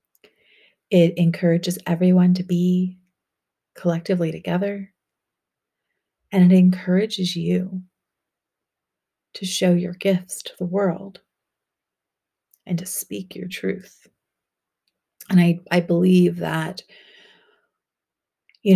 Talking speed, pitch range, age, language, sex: 95 wpm, 165-185 Hz, 30-49, English, female